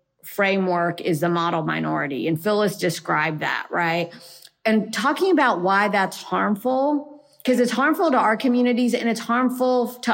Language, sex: English, female